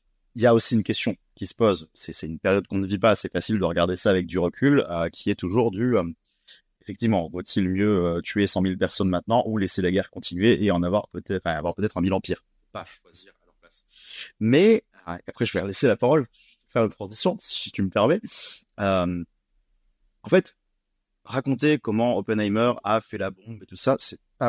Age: 30-49